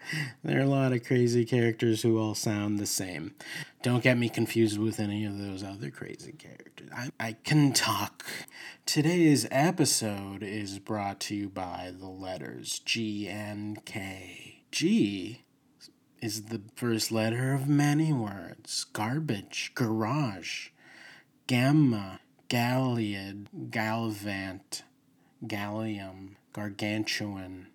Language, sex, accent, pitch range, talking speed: English, male, American, 100-125 Hz, 115 wpm